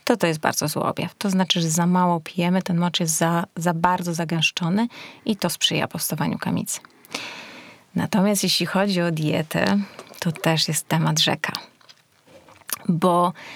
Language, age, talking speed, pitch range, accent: Polish, 30-49, 150 wpm, 175-205 Hz, native